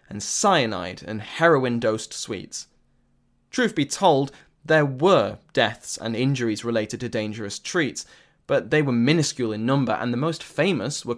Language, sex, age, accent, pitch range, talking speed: English, male, 20-39, British, 115-155 Hz, 150 wpm